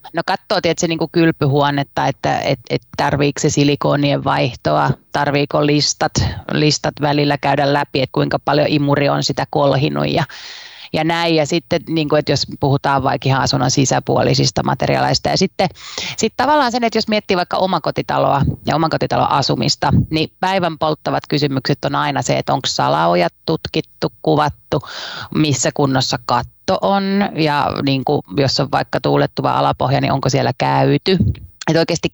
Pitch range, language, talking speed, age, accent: 135-170 Hz, Finnish, 145 wpm, 30-49, native